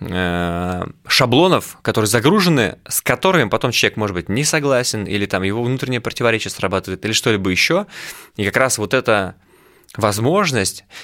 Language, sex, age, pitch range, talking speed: Russian, male, 20-39, 100-130 Hz, 140 wpm